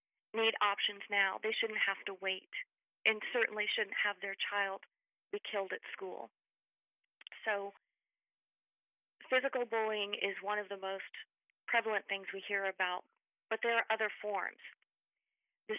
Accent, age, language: American, 40-59, English